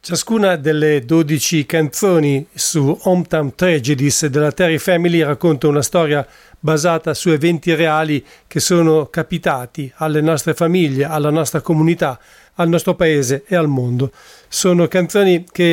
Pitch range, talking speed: 150-175 Hz, 135 wpm